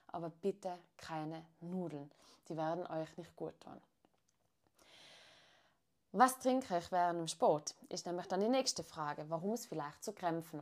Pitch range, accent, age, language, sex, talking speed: 165-210 Hz, German, 20-39, German, female, 155 wpm